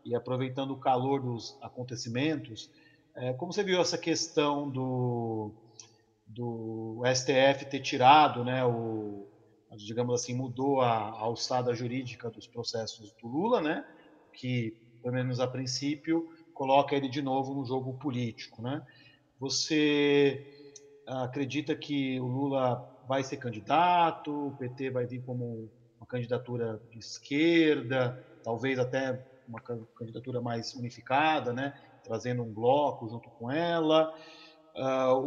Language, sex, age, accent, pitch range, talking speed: Portuguese, male, 40-59, Brazilian, 120-145 Hz, 125 wpm